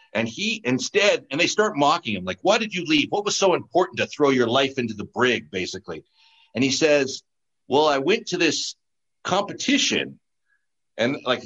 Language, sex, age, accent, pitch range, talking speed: English, male, 60-79, American, 125-205 Hz, 190 wpm